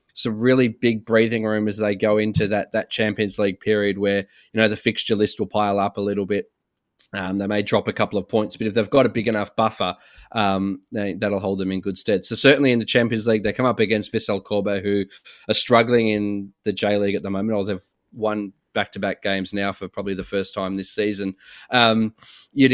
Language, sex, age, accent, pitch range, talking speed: English, male, 20-39, Australian, 100-110 Hz, 230 wpm